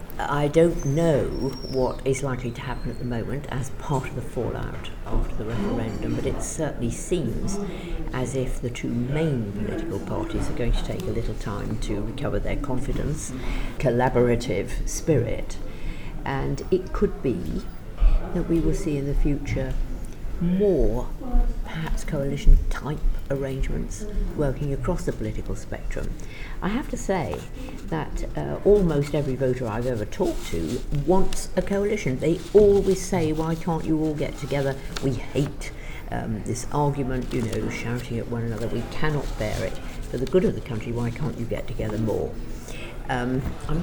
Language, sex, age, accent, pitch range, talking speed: English, female, 50-69, British, 120-155 Hz, 160 wpm